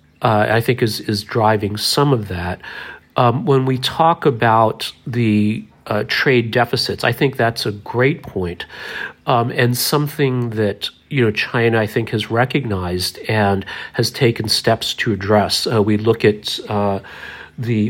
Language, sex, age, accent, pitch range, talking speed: English, male, 40-59, American, 105-125 Hz, 160 wpm